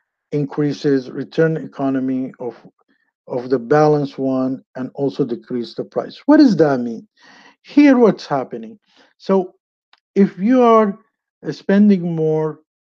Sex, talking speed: male, 120 wpm